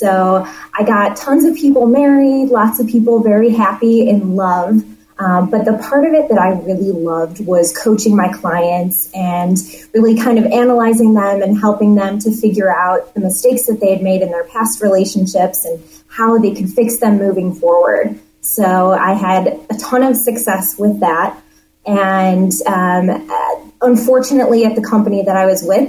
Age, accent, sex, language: 20-39, American, female, English